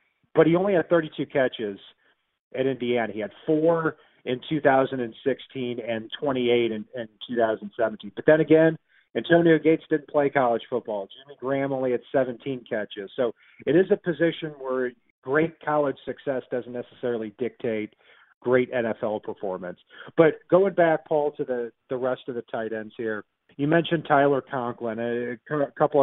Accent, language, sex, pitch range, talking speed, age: American, English, male, 120-150 Hz, 155 wpm, 40-59